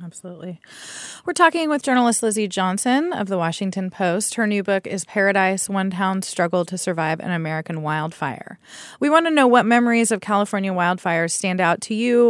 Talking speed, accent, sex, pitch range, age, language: 180 wpm, American, female, 180-225 Hz, 20-39, English